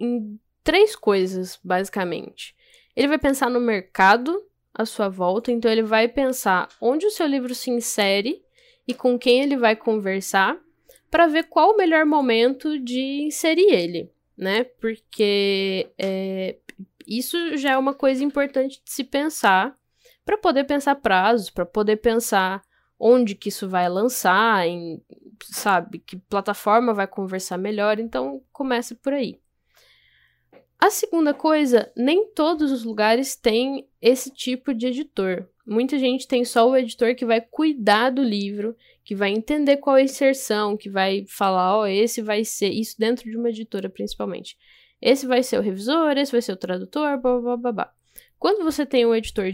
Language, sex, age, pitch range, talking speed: Portuguese, female, 10-29, 200-275 Hz, 160 wpm